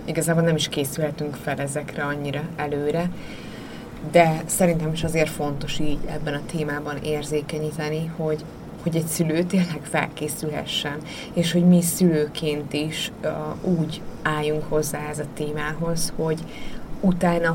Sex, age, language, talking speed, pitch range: female, 20-39, Hungarian, 125 wpm, 155-175 Hz